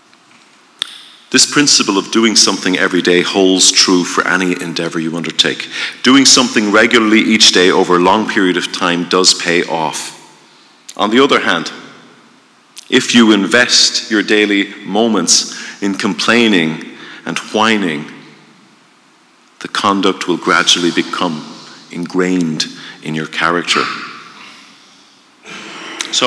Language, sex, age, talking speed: English, male, 40-59, 120 wpm